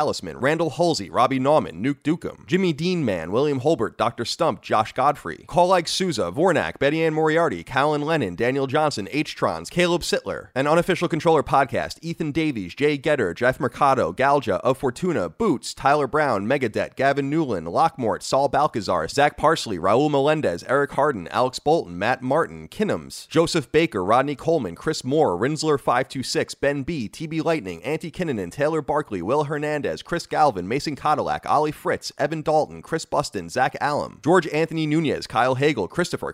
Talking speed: 160 wpm